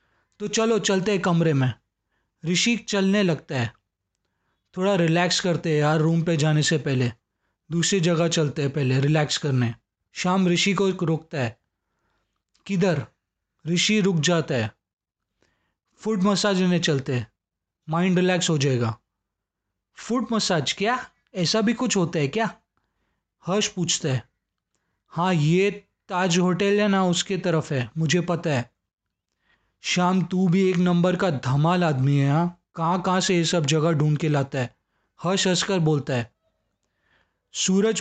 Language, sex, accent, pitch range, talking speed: Hindi, male, native, 120-185 Hz, 145 wpm